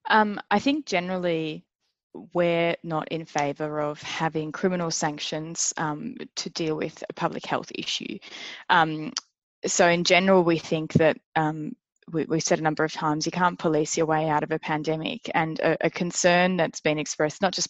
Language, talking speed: English, 175 wpm